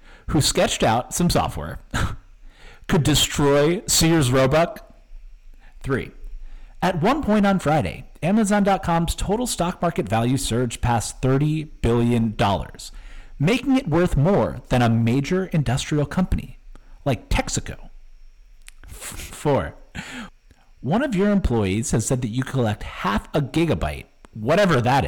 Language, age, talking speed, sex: English, 50-69, 120 wpm, male